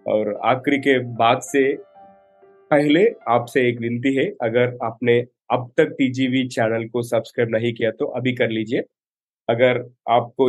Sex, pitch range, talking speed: male, 120-145 Hz, 150 wpm